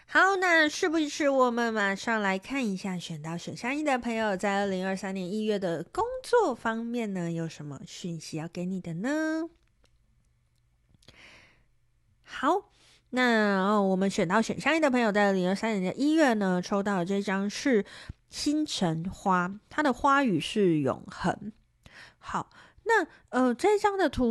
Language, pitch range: Chinese, 175-245 Hz